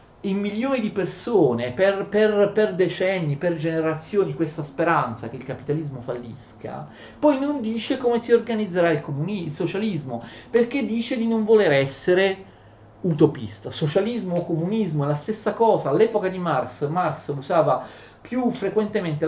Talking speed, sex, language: 140 wpm, male, Italian